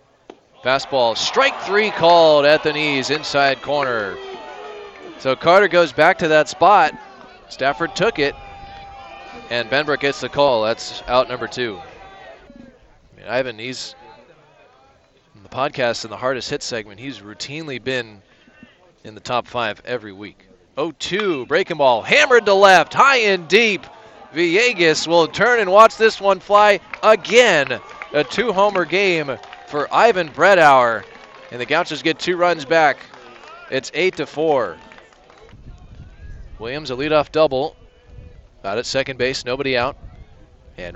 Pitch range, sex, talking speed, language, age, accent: 120-165 Hz, male, 135 wpm, English, 20-39, American